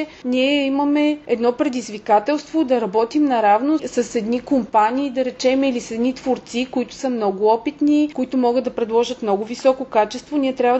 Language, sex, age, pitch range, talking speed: Bulgarian, female, 30-49, 230-290 Hz, 160 wpm